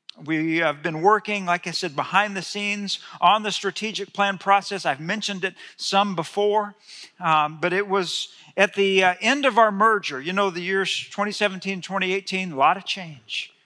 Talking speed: 180 wpm